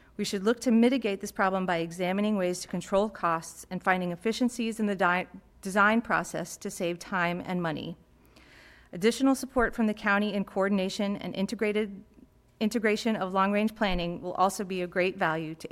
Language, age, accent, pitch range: English, 40-59, American, 180-220 Hz